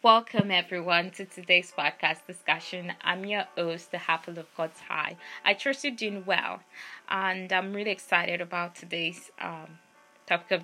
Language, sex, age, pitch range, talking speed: English, female, 20-39, 175-210 Hz, 160 wpm